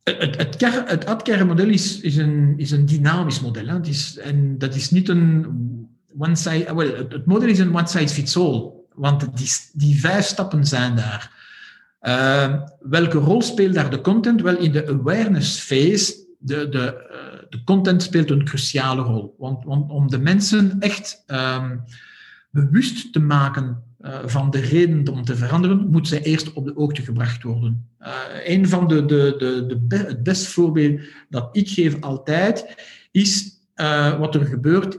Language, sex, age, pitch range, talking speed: Dutch, male, 50-69, 140-180 Hz, 145 wpm